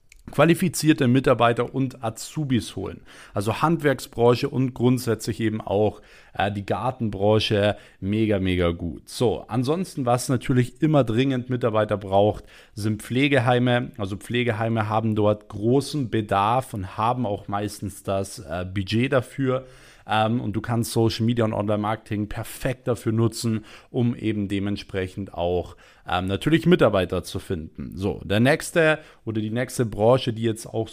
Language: German